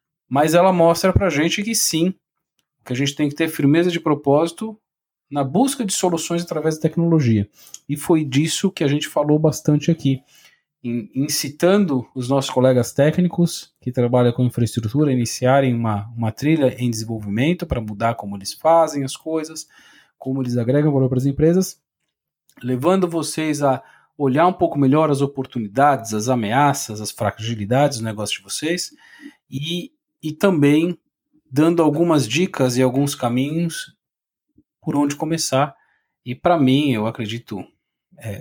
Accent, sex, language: Brazilian, male, Portuguese